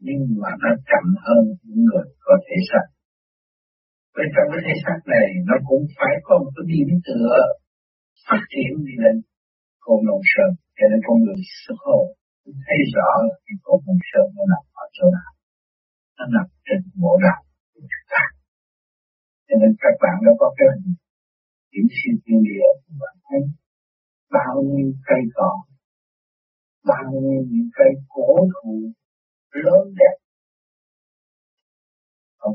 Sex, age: male, 60-79